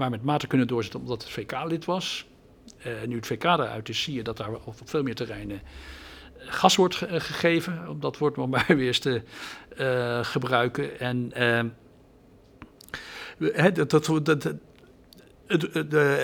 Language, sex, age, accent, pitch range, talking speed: Dutch, male, 60-79, Dutch, 115-150 Hz, 135 wpm